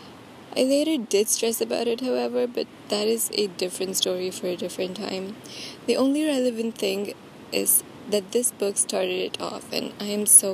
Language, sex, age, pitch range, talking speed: English, female, 20-39, 195-235 Hz, 180 wpm